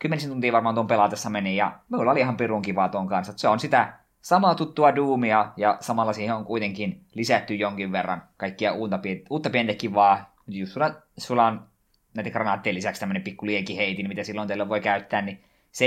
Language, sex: Finnish, male